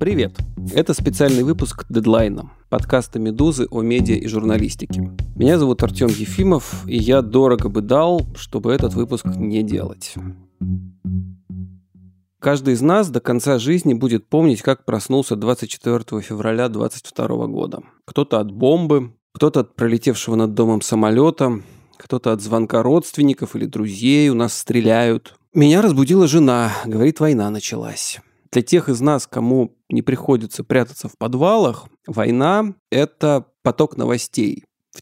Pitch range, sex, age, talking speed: 110-145 Hz, male, 30-49, 135 wpm